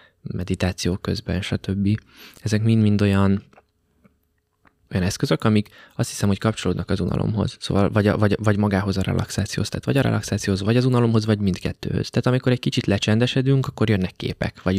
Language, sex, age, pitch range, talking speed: Hungarian, male, 20-39, 95-110 Hz, 165 wpm